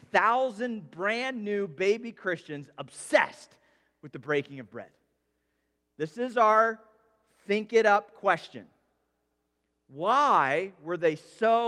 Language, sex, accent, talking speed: English, male, American, 115 wpm